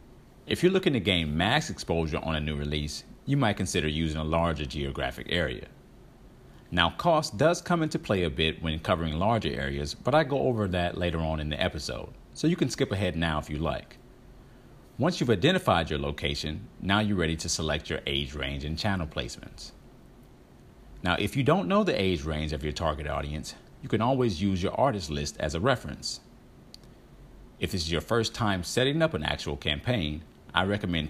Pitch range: 75-110 Hz